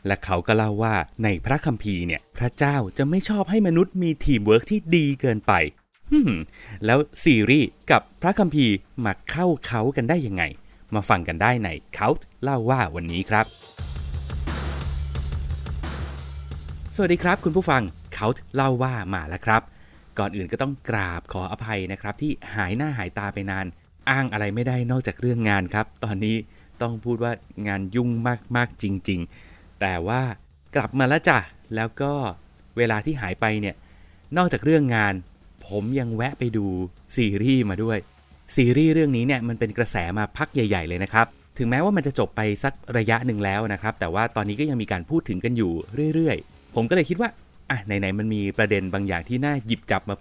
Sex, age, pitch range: male, 20-39, 95-135 Hz